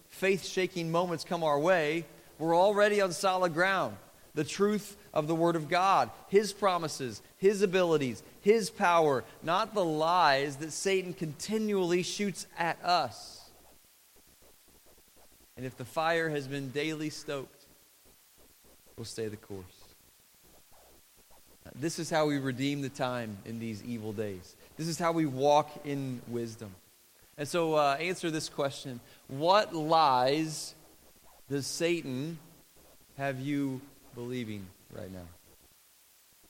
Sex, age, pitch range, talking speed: male, 30-49, 135-170 Hz, 125 wpm